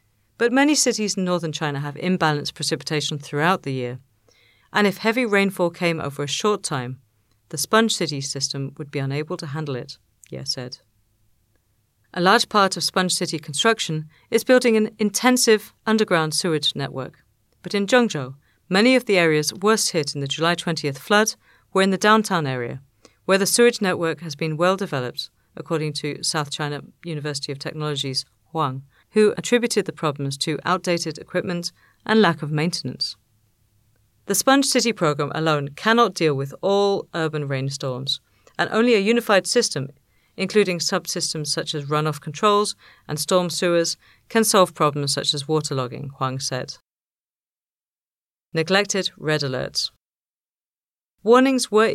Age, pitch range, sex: 40-59, 140-195 Hz, female